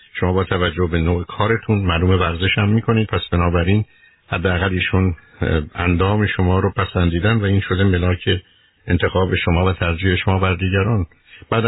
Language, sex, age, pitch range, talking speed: Persian, male, 50-69, 90-115 Hz, 155 wpm